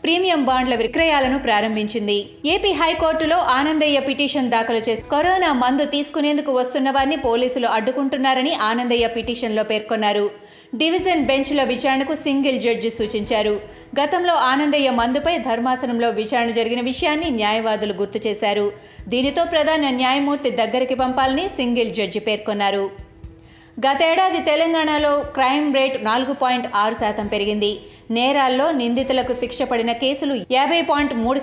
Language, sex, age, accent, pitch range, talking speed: Telugu, female, 30-49, native, 225-280 Hz, 115 wpm